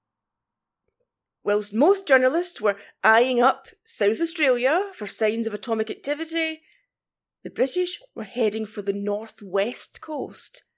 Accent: British